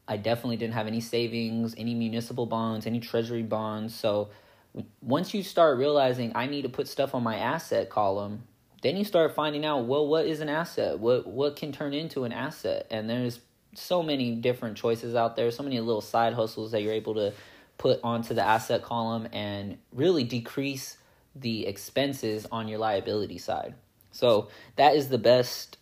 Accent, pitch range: American, 110-120 Hz